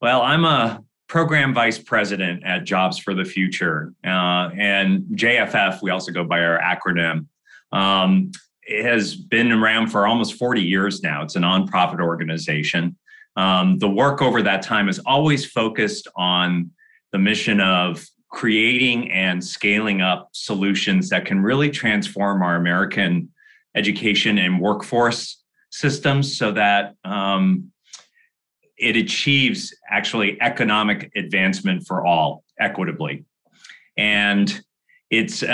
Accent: American